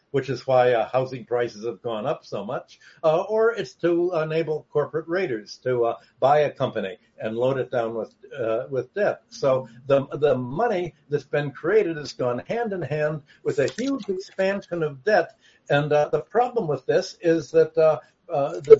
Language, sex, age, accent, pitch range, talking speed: English, male, 60-79, American, 130-195 Hz, 190 wpm